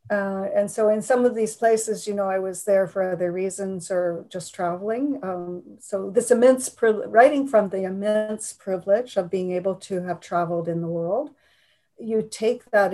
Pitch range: 185-220 Hz